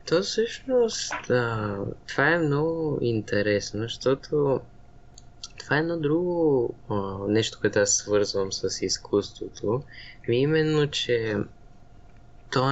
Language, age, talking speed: Bulgarian, 20-39, 100 wpm